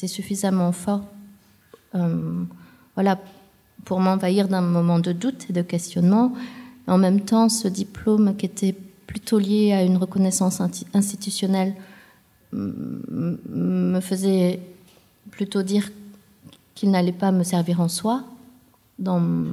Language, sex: French, female